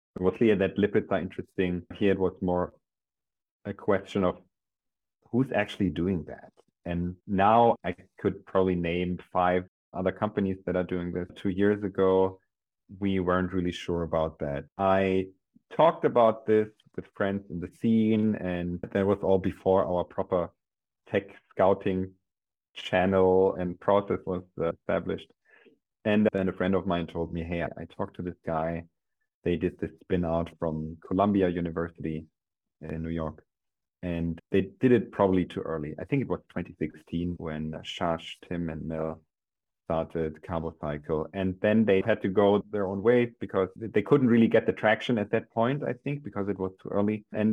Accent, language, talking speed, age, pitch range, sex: German, English, 170 wpm, 40-59, 85-105 Hz, male